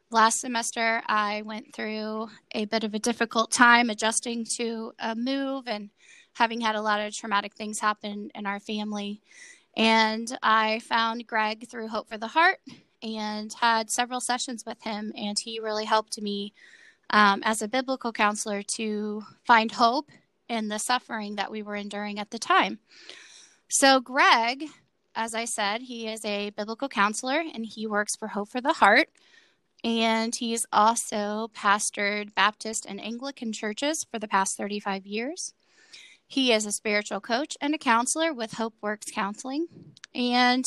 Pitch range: 210-250 Hz